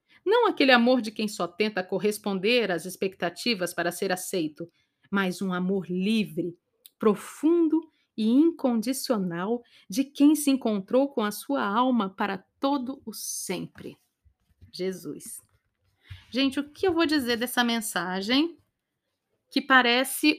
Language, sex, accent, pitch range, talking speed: Portuguese, female, Brazilian, 210-275 Hz, 125 wpm